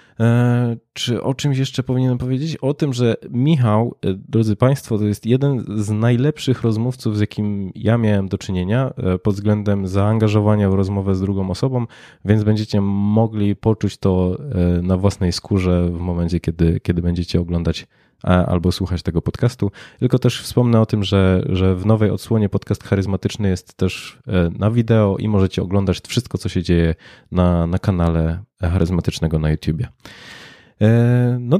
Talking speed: 155 wpm